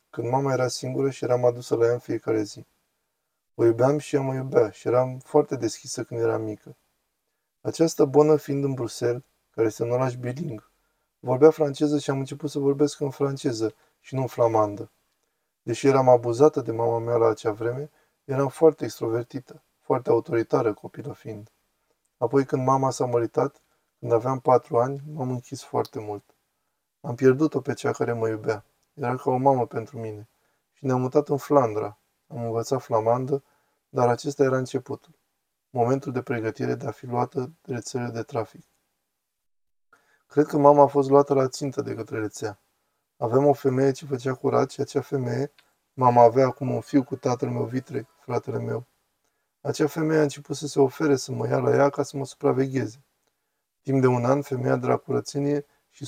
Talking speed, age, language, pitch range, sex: 180 wpm, 20-39, Romanian, 120-145 Hz, male